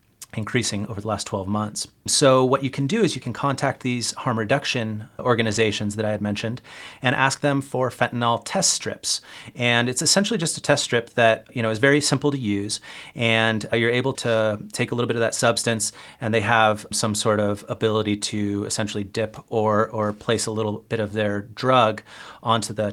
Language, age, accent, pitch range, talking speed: English, 30-49, American, 105-125 Hz, 200 wpm